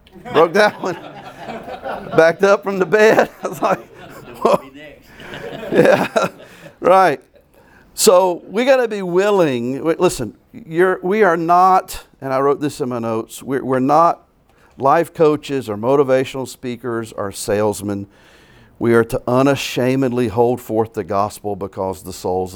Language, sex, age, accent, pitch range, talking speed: English, male, 50-69, American, 115-175 Hz, 140 wpm